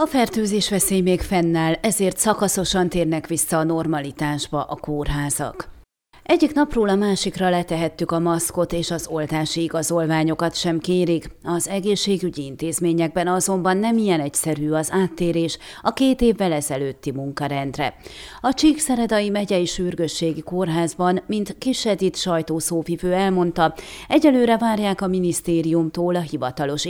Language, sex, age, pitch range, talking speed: Hungarian, female, 30-49, 160-205 Hz, 125 wpm